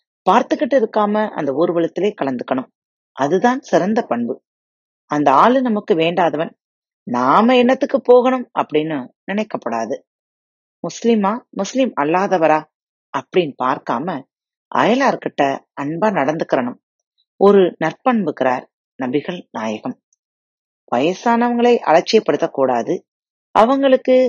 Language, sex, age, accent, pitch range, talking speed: Tamil, female, 30-49, native, 145-240 Hz, 80 wpm